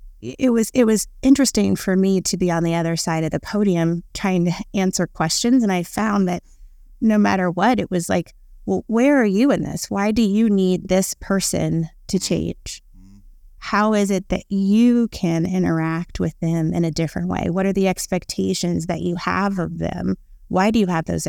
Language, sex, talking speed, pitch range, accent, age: English, female, 200 wpm, 165-195 Hz, American, 30-49